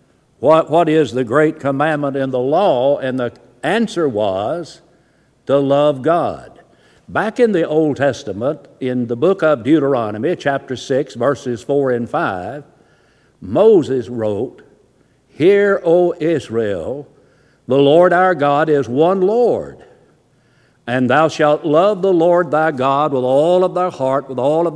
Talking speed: 145 wpm